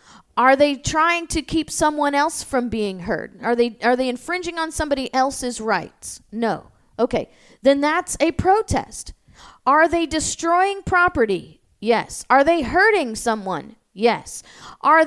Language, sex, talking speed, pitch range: English, female, 140 wpm, 225-320 Hz